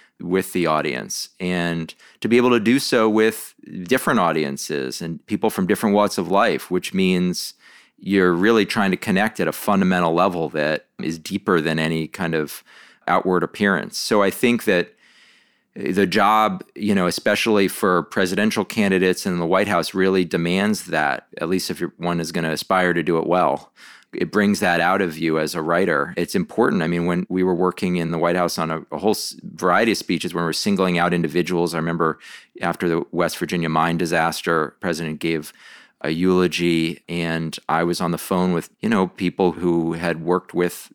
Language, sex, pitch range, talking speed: English, male, 80-95 Hz, 195 wpm